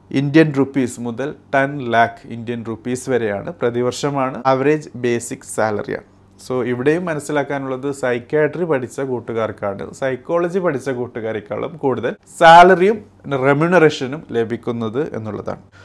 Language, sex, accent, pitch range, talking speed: Malayalam, male, native, 125-150 Hz, 100 wpm